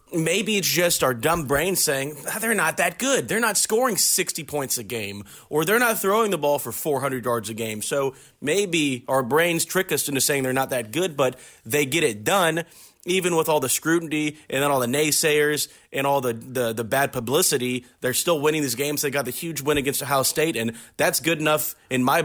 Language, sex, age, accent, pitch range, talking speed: English, male, 30-49, American, 125-150 Hz, 220 wpm